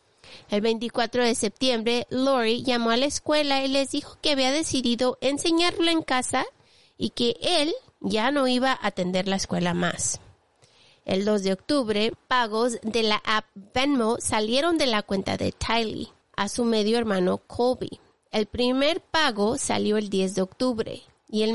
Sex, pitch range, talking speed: female, 210-265 Hz, 165 wpm